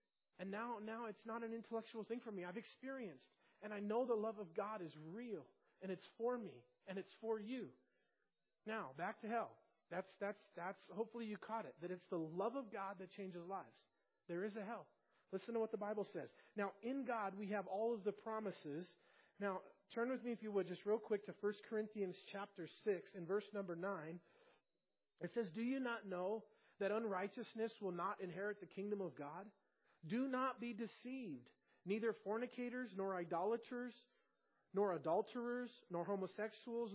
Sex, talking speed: male, 185 wpm